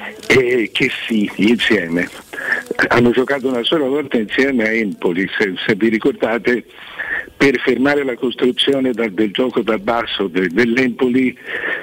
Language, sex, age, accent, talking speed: Italian, male, 60-79, native, 135 wpm